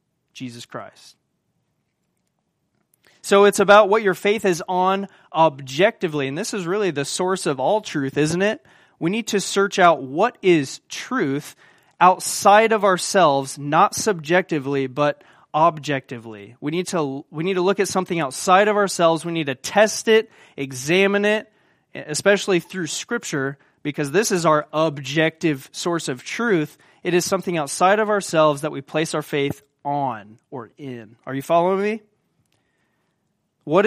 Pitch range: 145-190 Hz